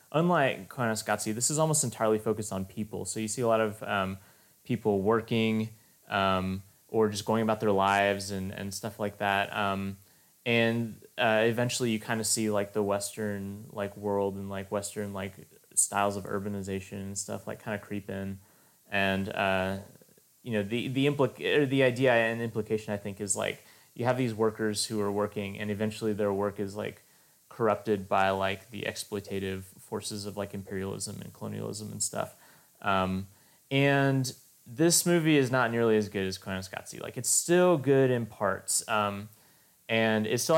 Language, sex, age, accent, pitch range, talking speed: English, male, 20-39, American, 100-120 Hz, 175 wpm